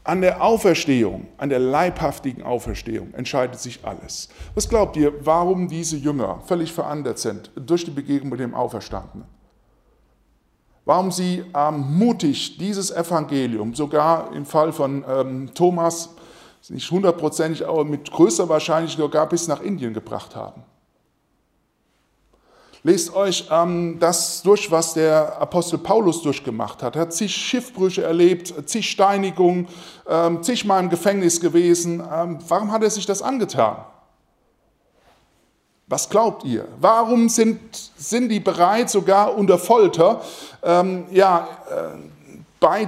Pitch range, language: 150-200 Hz, German